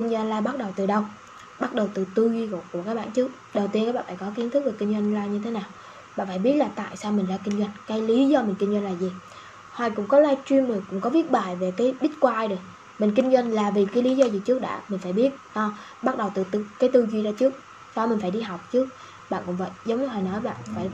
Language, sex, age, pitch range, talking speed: Vietnamese, female, 10-29, 200-260 Hz, 290 wpm